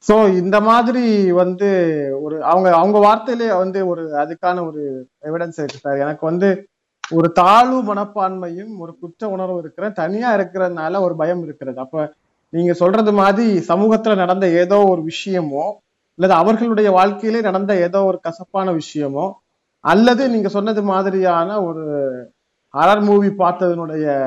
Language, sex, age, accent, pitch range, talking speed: Tamil, male, 30-49, native, 155-205 Hz, 130 wpm